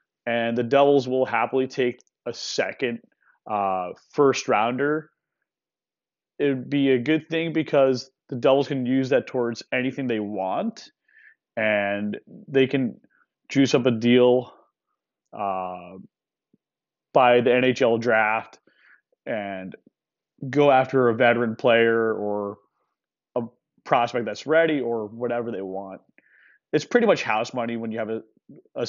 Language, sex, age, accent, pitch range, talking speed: English, male, 20-39, American, 115-140 Hz, 130 wpm